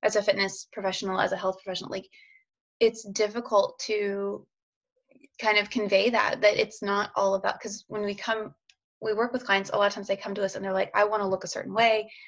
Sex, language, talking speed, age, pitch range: female, English, 230 wpm, 20-39, 195-220 Hz